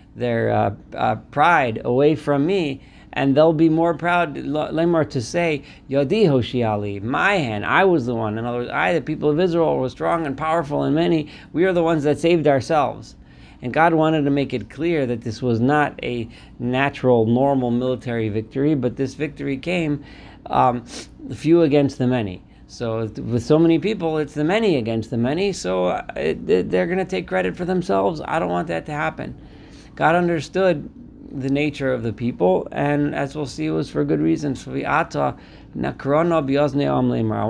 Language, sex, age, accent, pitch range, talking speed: English, male, 40-59, American, 110-150 Hz, 180 wpm